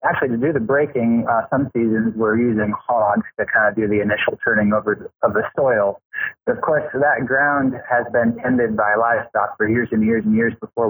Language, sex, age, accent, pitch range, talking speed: English, male, 20-39, American, 110-130 Hz, 210 wpm